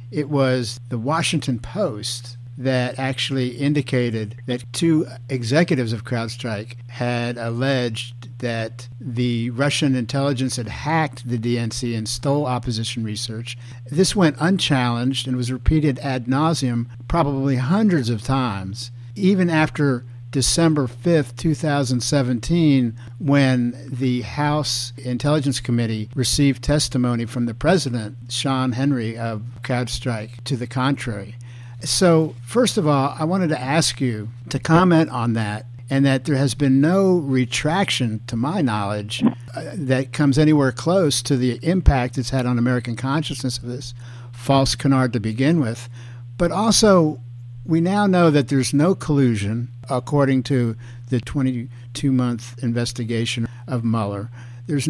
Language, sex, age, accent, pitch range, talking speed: English, male, 50-69, American, 120-140 Hz, 130 wpm